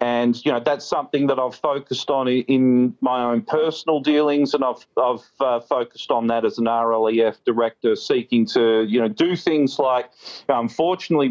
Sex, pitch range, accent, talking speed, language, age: male, 115-135 Hz, Australian, 175 wpm, English, 40-59